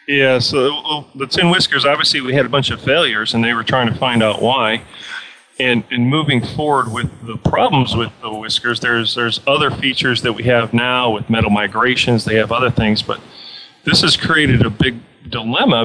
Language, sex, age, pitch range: English, male, 40-59, 110-125 Hz